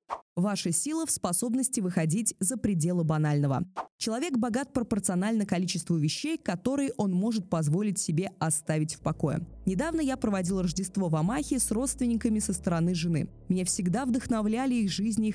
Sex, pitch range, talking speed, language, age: female, 165-225 Hz, 150 wpm, Russian, 20-39